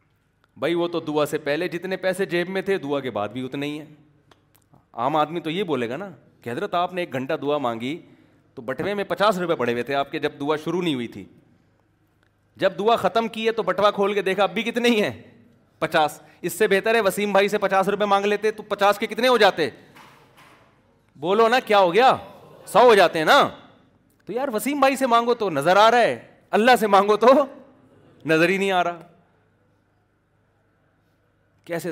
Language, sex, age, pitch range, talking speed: Urdu, male, 30-49, 145-210 Hz, 200 wpm